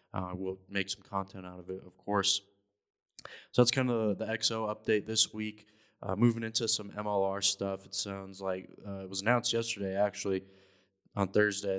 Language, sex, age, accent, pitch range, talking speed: English, male, 20-39, American, 95-105 Hz, 190 wpm